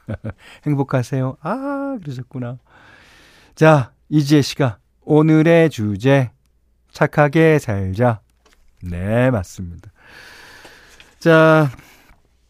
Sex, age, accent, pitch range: male, 40-59, native, 100-155 Hz